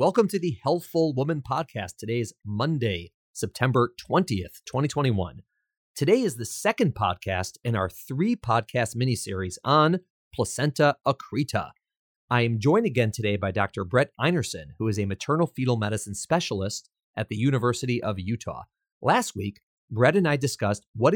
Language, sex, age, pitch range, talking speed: English, male, 30-49, 100-145 Hz, 150 wpm